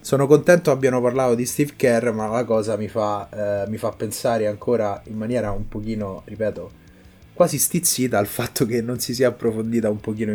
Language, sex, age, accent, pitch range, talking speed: Italian, male, 20-39, native, 105-125 Hz, 190 wpm